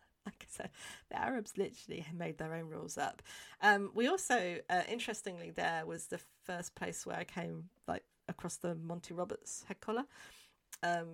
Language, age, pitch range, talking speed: English, 40-59, 165-200 Hz, 170 wpm